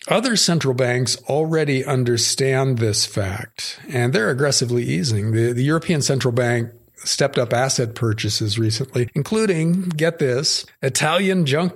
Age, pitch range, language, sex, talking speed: 50-69, 120-145 Hz, English, male, 135 wpm